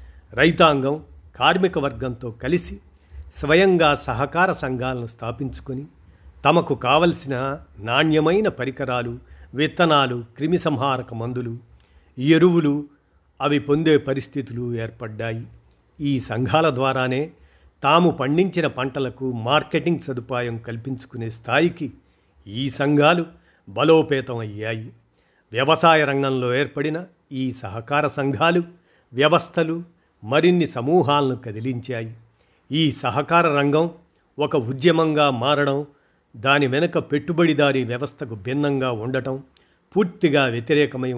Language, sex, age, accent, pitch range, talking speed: Telugu, male, 50-69, native, 120-155 Hz, 85 wpm